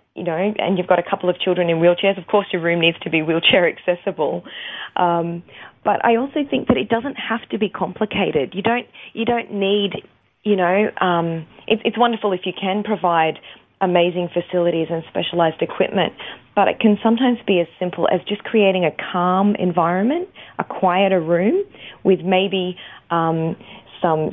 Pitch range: 165-195 Hz